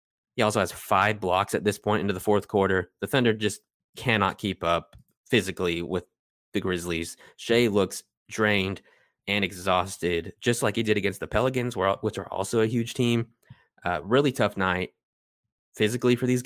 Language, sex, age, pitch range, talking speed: English, male, 20-39, 95-115 Hz, 170 wpm